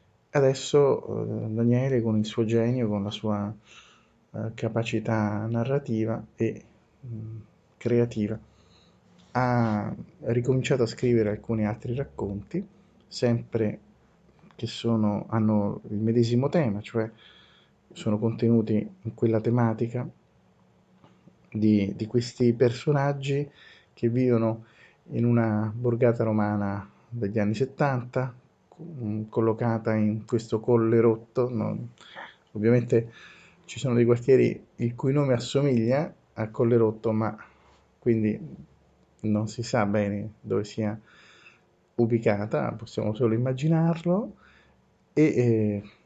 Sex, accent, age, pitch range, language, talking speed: male, native, 30-49, 105-120 Hz, Italian, 105 wpm